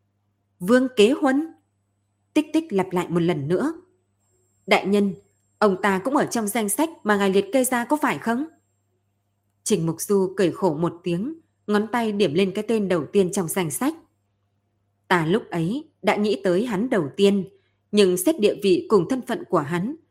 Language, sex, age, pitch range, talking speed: Vietnamese, female, 20-39, 170-220 Hz, 190 wpm